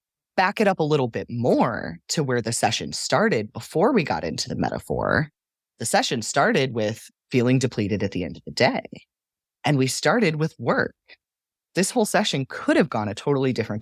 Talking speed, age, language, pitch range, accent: 190 wpm, 30-49, English, 115-165 Hz, American